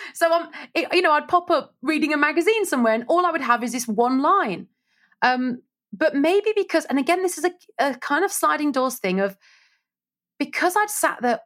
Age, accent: 30-49, British